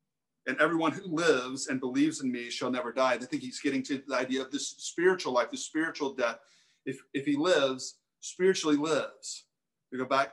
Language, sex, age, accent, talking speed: English, male, 40-59, American, 200 wpm